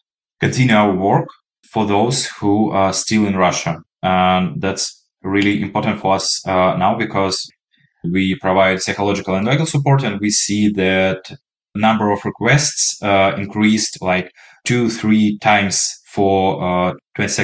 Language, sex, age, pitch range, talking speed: English, male, 20-39, 95-110 Hz, 140 wpm